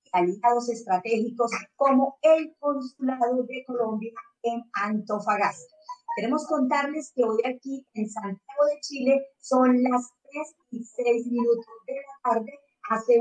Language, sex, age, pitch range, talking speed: Spanish, female, 30-49, 225-290 Hz, 125 wpm